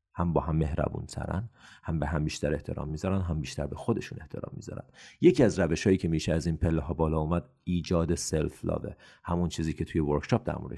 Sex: male